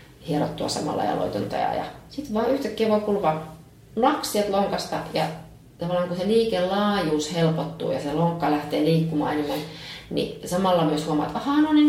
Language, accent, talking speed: Finnish, native, 155 wpm